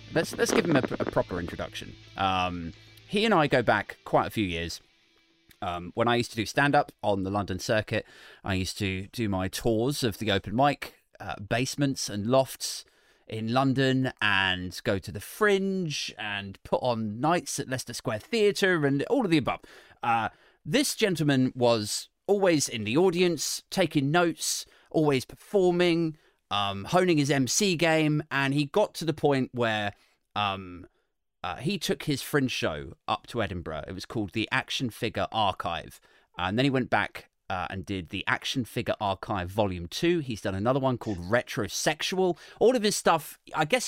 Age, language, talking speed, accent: 30-49, English, 180 wpm, British